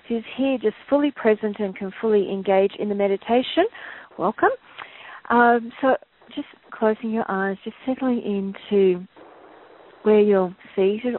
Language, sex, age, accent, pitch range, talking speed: English, female, 40-59, Australian, 190-235 Hz, 135 wpm